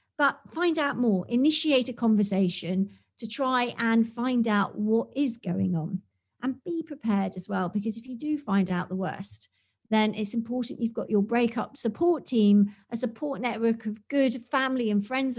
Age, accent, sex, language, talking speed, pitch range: 40-59, British, female, English, 180 wpm, 205-270 Hz